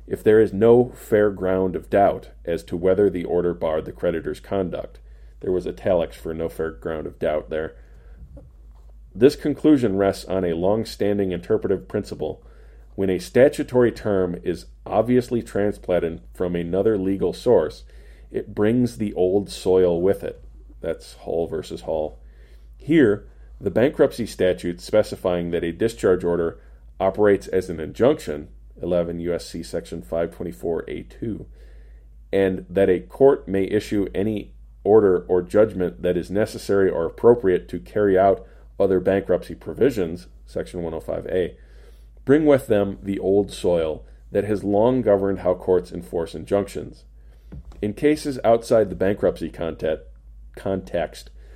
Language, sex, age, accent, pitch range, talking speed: English, male, 40-59, American, 80-105 Hz, 135 wpm